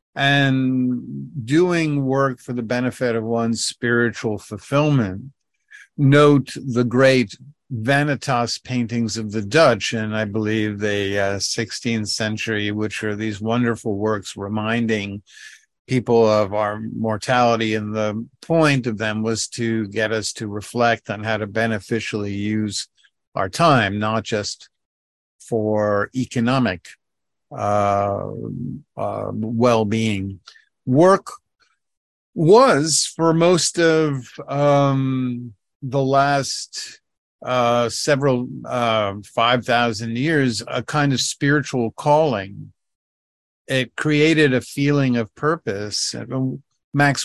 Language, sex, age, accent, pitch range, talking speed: English, male, 50-69, American, 105-130 Hz, 110 wpm